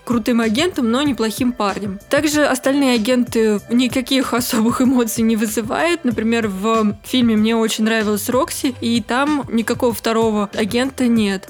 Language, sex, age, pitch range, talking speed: Russian, female, 20-39, 220-265 Hz, 135 wpm